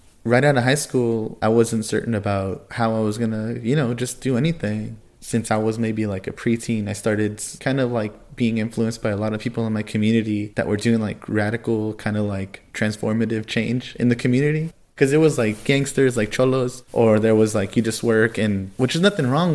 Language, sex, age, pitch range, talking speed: English, male, 20-39, 105-125 Hz, 225 wpm